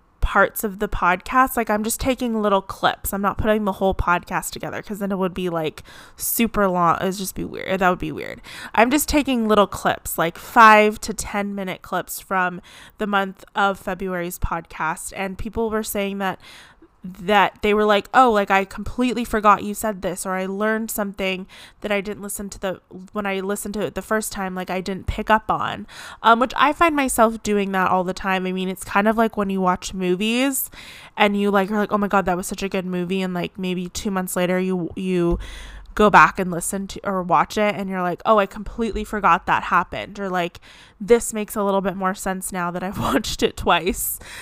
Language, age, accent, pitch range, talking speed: English, 20-39, American, 185-215 Hz, 225 wpm